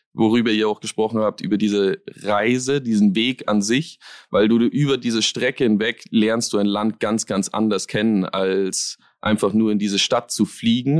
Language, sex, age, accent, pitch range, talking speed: German, male, 30-49, German, 105-135 Hz, 185 wpm